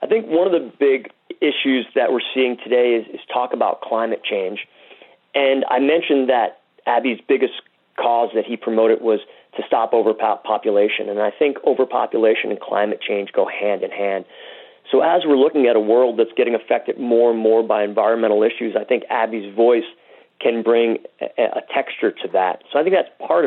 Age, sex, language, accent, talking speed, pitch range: 40-59, male, English, American, 190 wpm, 115-145 Hz